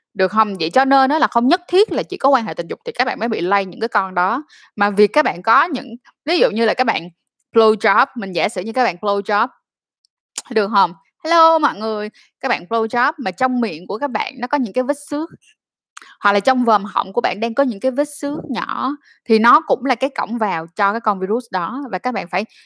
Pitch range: 215-280 Hz